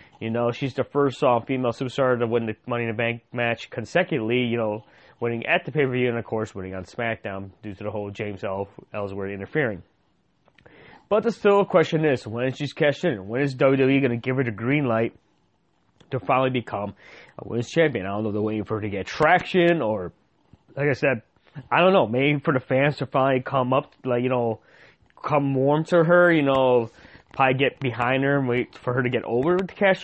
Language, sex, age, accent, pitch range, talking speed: English, male, 20-39, American, 110-140 Hz, 220 wpm